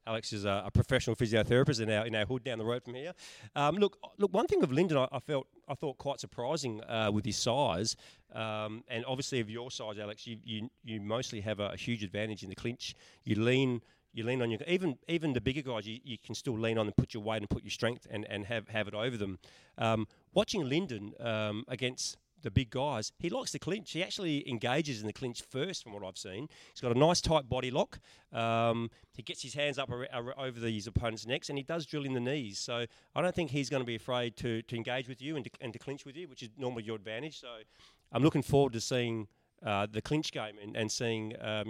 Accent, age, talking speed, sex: Australian, 40-59, 250 wpm, male